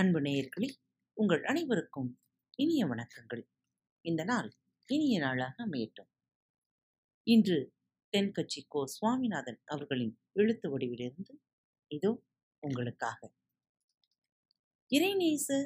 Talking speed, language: 85 wpm, Tamil